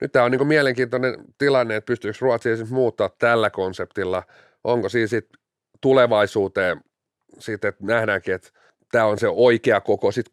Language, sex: Finnish, male